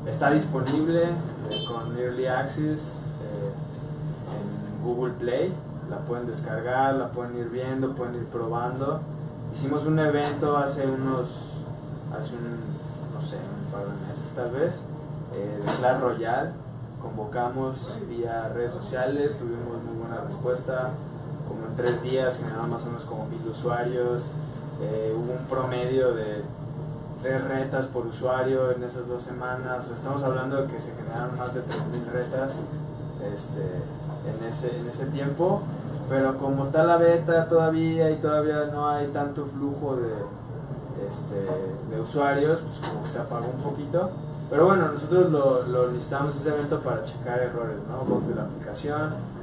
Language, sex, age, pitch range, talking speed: Spanish, male, 20-39, 125-150 Hz, 155 wpm